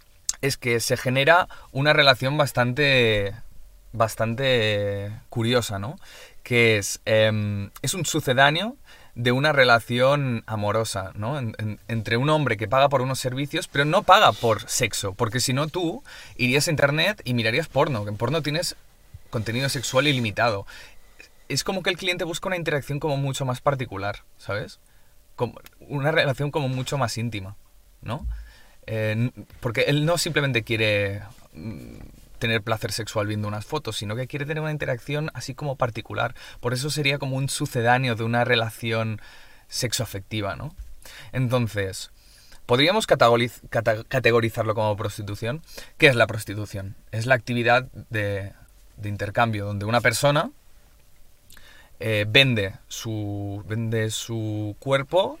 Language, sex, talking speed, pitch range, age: Spanish, male, 140 wpm, 110-140 Hz, 20-39